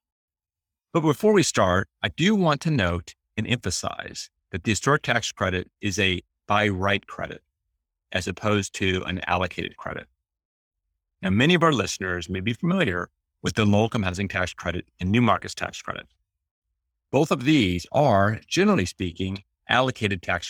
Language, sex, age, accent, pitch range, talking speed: English, male, 50-69, American, 85-110 Hz, 160 wpm